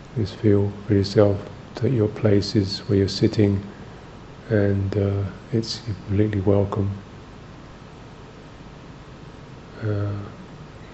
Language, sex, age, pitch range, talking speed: English, male, 50-69, 100-115 Hz, 95 wpm